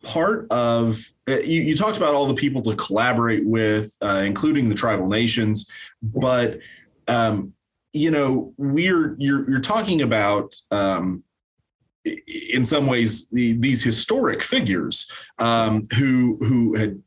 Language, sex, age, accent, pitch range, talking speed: English, male, 30-49, American, 105-130 Hz, 135 wpm